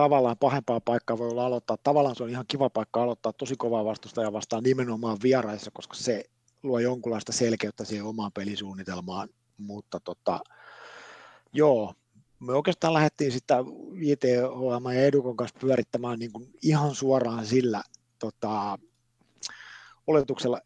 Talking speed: 135 wpm